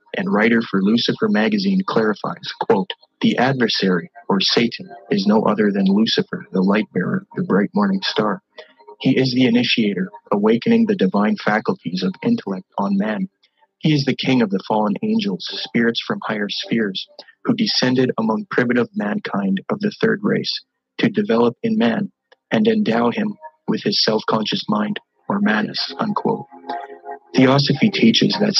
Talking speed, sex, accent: 155 wpm, male, American